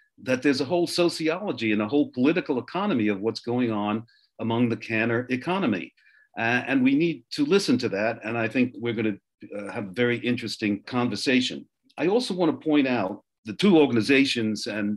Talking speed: 195 wpm